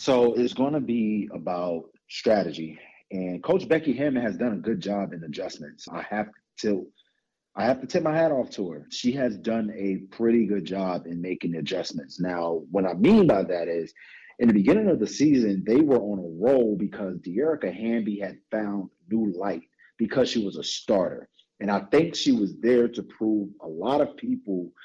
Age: 40-59